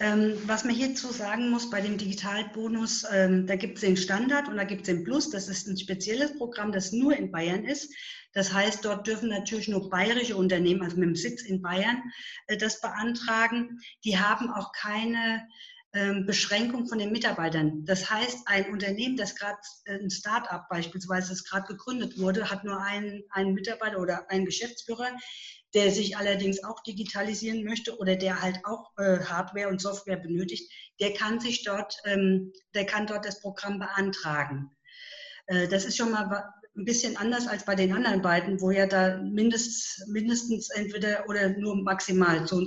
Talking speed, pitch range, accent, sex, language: 175 wpm, 190-220 Hz, German, female, German